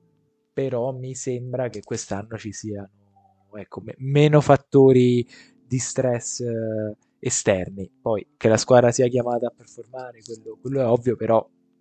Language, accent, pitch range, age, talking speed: Italian, native, 110-130 Hz, 20-39, 135 wpm